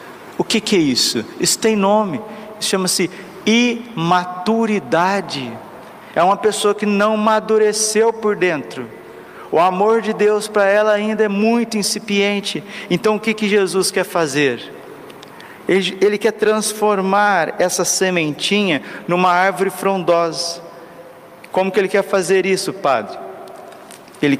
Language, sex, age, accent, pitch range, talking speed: Portuguese, male, 50-69, Brazilian, 160-210 Hz, 130 wpm